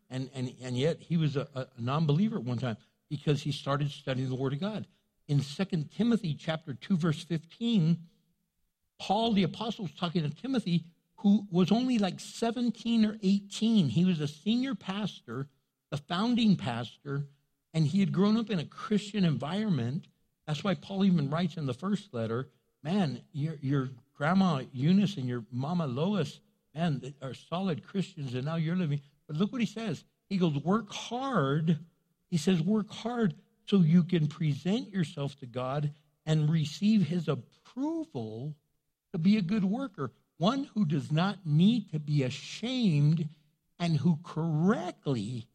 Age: 60-79